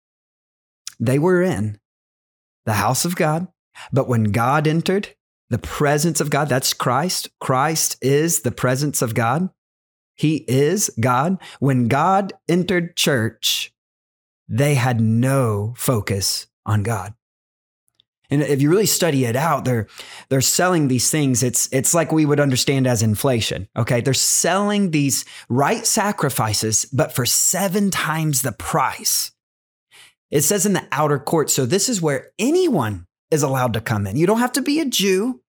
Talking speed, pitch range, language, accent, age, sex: 155 wpm, 120-165 Hz, English, American, 30-49, male